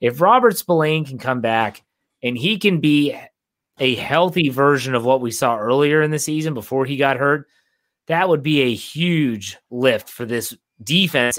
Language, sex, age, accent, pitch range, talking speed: English, male, 30-49, American, 120-145 Hz, 180 wpm